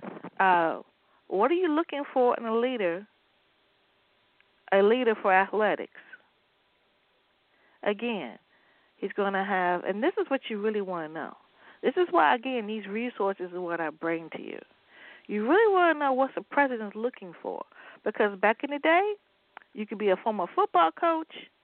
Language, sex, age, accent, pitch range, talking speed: English, female, 40-59, American, 185-255 Hz, 160 wpm